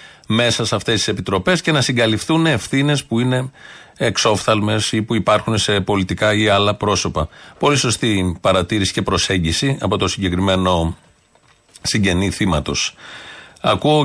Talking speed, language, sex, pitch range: 130 wpm, Greek, male, 105-135 Hz